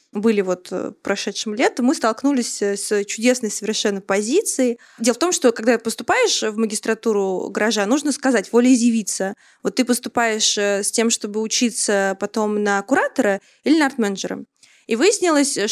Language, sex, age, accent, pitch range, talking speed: Russian, female, 20-39, native, 220-270 Hz, 140 wpm